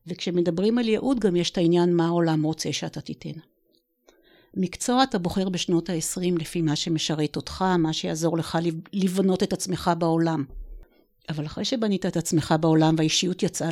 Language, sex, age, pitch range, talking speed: Hebrew, female, 50-69, 160-190 Hz, 155 wpm